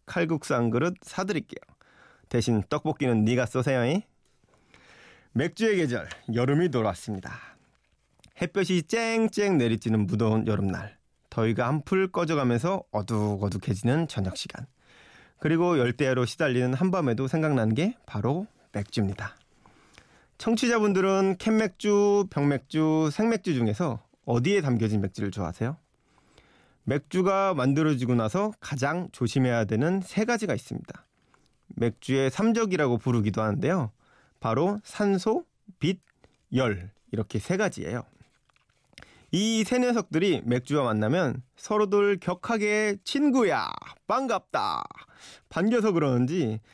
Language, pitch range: Korean, 120-195 Hz